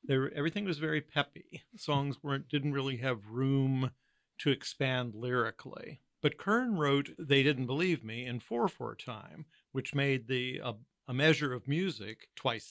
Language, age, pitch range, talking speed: English, 50-69, 130-175 Hz, 170 wpm